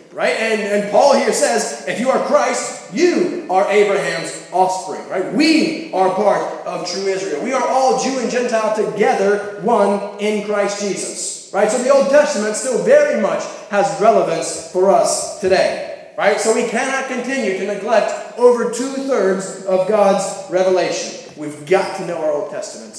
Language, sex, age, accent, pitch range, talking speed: English, male, 20-39, American, 185-245 Hz, 165 wpm